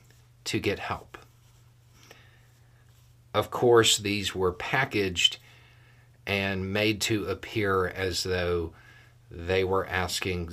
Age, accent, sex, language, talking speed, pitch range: 50-69, American, male, English, 95 wpm, 90-120 Hz